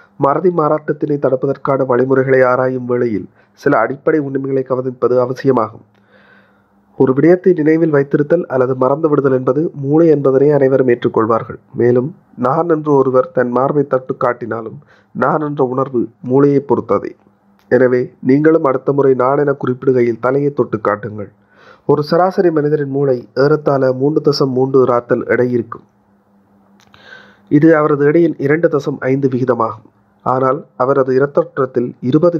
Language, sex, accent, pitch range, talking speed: Tamil, male, native, 125-145 Hz, 120 wpm